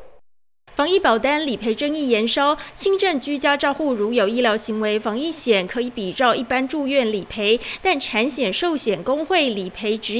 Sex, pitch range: female, 230-320 Hz